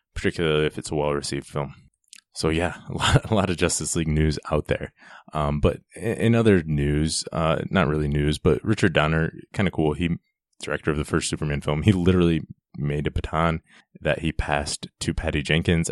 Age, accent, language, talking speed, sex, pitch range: 20-39, American, English, 190 wpm, male, 75-90 Hz